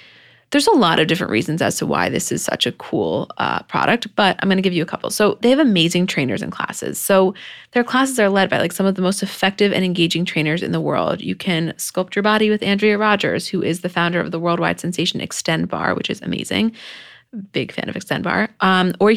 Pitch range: 170-215 Hz